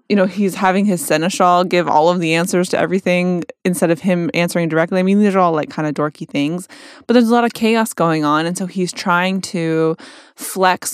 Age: 20-39